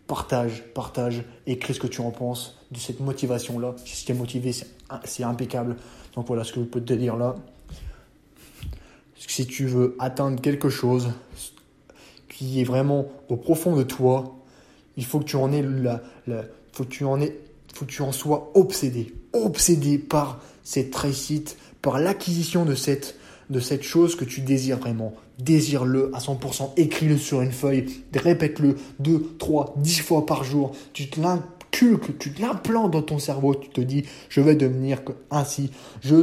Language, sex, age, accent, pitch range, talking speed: French, male, 20-39, French, 130-150 Hz, 155 wpm